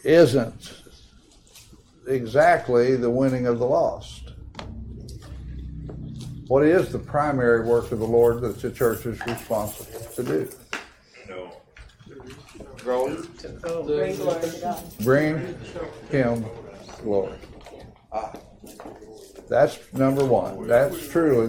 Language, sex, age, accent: English, male, 60-79, American